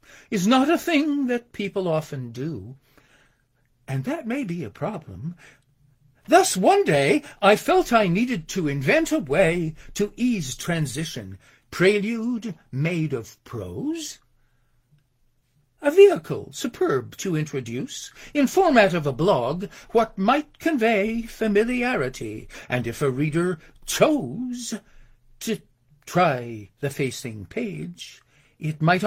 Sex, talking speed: male, 120 wpm